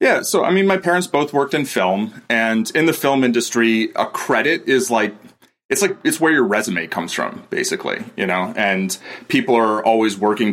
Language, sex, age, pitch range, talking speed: English, male, 30-49, 105-130 Hz, 200 wpm